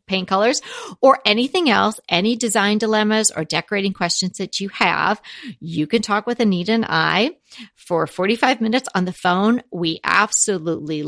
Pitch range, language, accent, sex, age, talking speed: 170-230 Hz, English, American, female, 40-59, 155 wpm